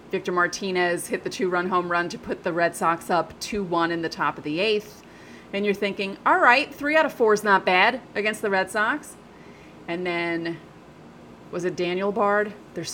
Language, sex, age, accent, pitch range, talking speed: English, female, 30-49, American, 170-240 Hz, 200 wpm